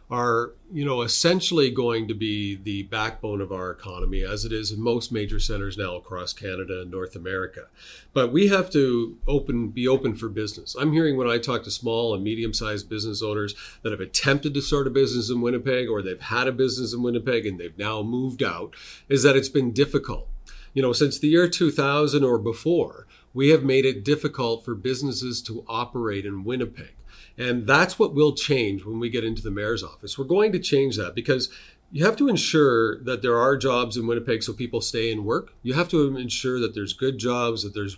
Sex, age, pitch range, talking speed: male, 40-59, 110-135 Hz, 210 wpm